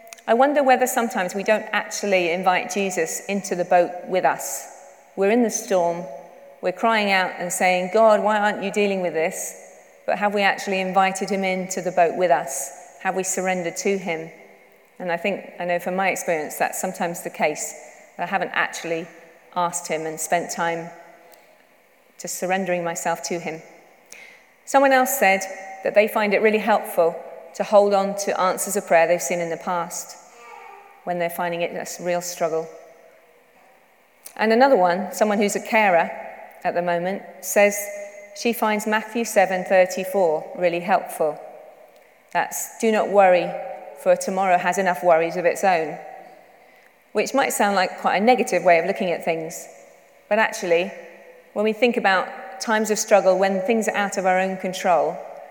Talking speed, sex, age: 170 wpm, female, 30-49